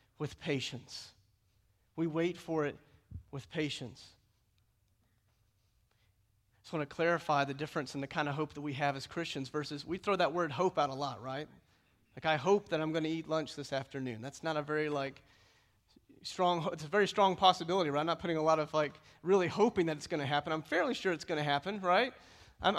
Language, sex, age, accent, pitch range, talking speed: English, male, 40-59, American, 150-210 Hz, 215 wpm